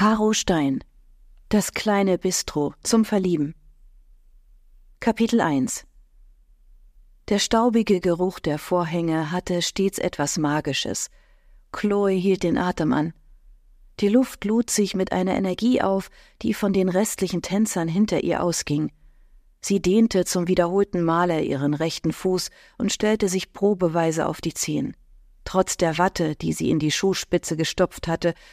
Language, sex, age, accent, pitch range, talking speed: German, female, 40-59, German, 165-205 Hz, 135 wpm